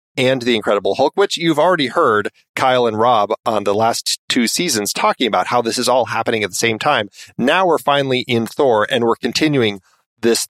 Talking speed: 205 wpm